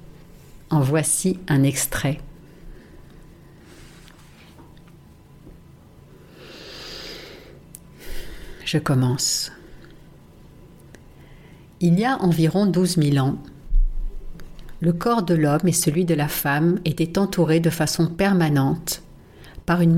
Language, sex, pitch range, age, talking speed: French, female, 145-170 Hz, 60-79, 85 wpm